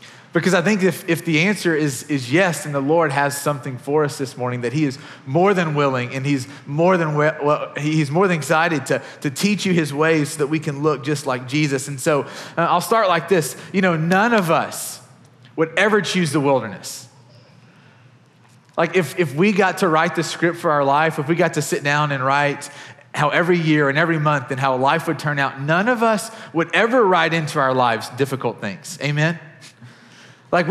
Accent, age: American, 30-49